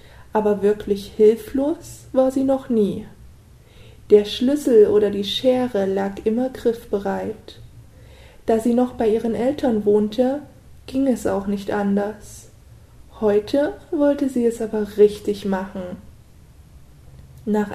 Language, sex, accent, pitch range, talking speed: German, female, German, 200-240 Hz, 120 wpm